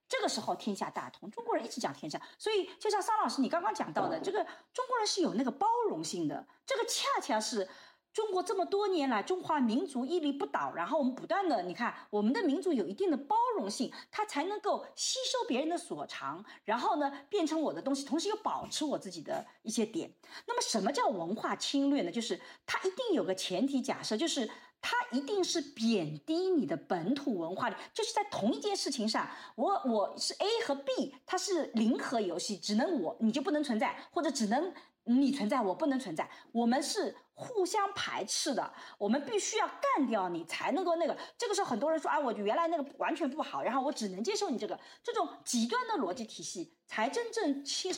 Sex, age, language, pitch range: female, 40-59, Chinese, 245-375 Hz